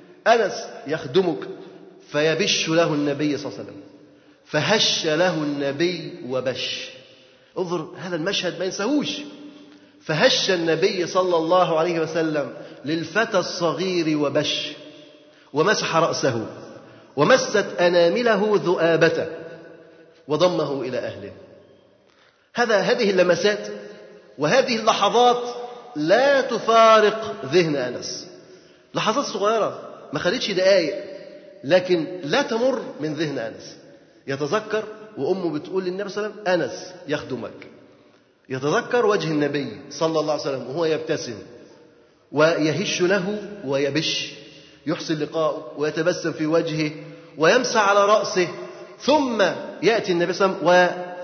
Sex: male